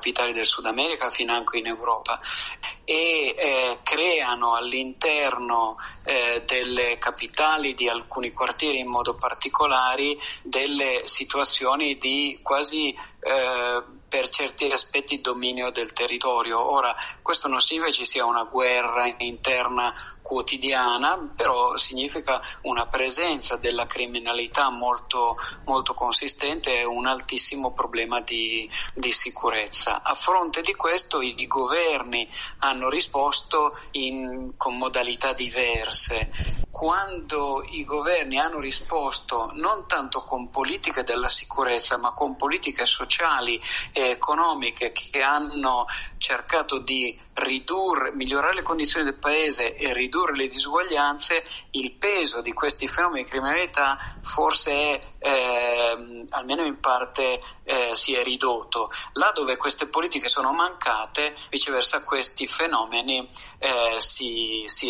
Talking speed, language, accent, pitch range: 120 wpm, Italian, native, 120-145 Hz